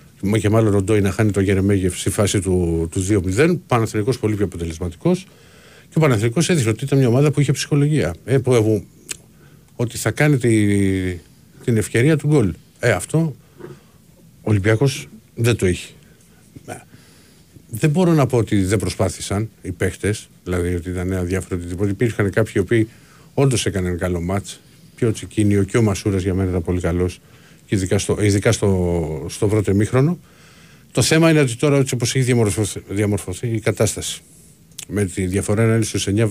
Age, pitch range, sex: 50-69, 100-135 Hz, male